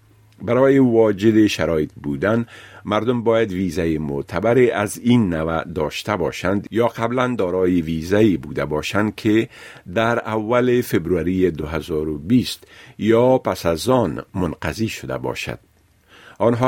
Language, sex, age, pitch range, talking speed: Persian, male, 50-69, 85-115 Hz, 115 wpm